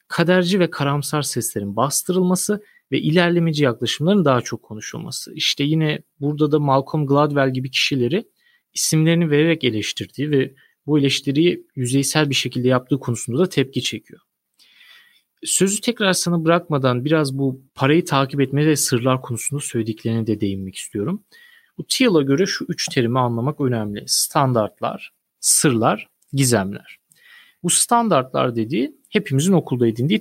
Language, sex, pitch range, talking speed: Turkish, male, 120-170 Hz, 130 wpm